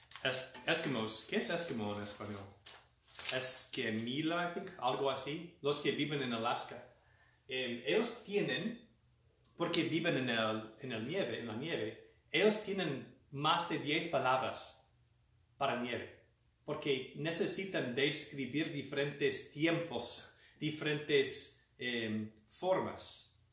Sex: male